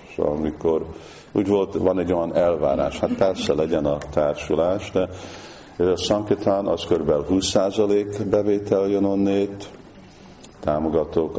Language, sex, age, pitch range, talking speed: Hungarian, male, 50-69, 80-90 Hz, 110 wpm